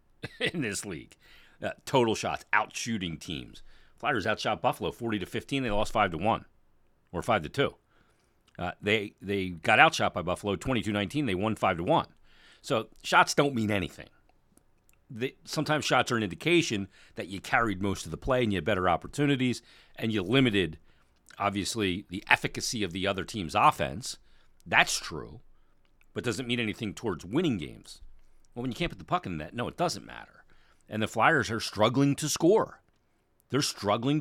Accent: American